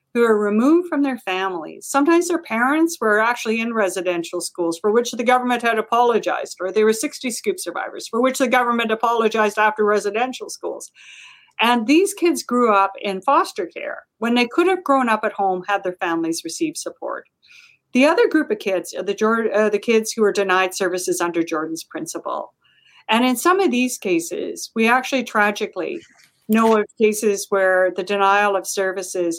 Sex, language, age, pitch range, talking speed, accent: female, English, 50-69, 200-270 Hz, 180 wpm, American